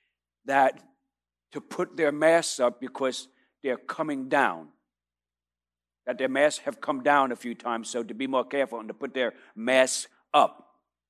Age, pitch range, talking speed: 60-79, 115-180 Hz, 160 wpm